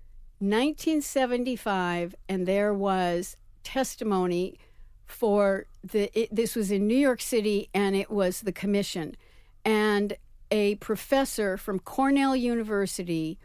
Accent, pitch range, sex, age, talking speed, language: American, 180-230 Hz, female, 60-79, 110 wpm, English